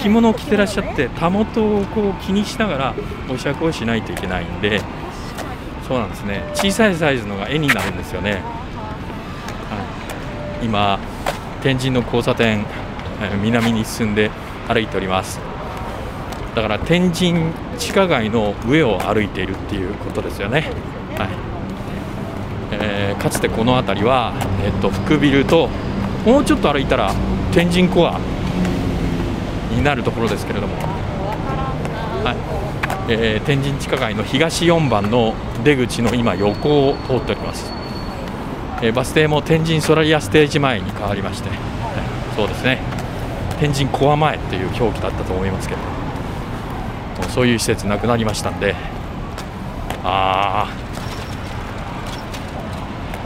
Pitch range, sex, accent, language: 100-150 Hz, male, native, Japanese